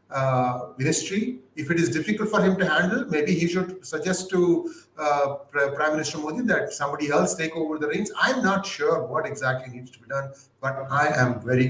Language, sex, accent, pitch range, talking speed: English, male, Indian, 130-170 Hz, 200 wpm